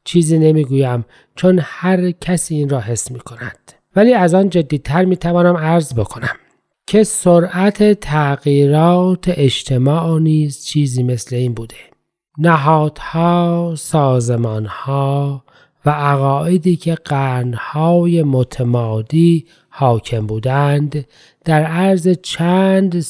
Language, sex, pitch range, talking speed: Persian, male, 140-180 Hz, 105 wpm